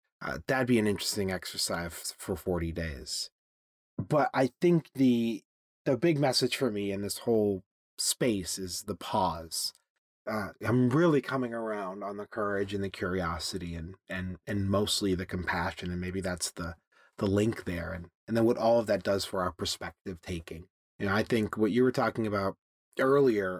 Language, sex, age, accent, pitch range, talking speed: English, male, 30-49, American, 100-130 Hz, 180 wpm